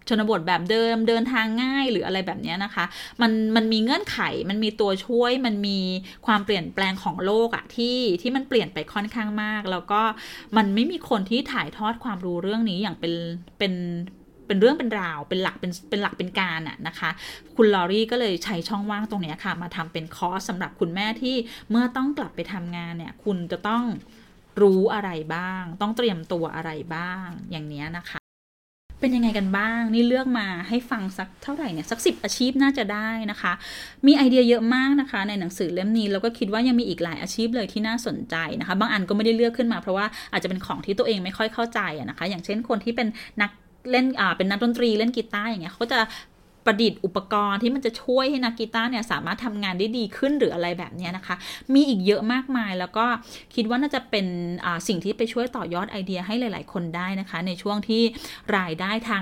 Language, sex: Thai, female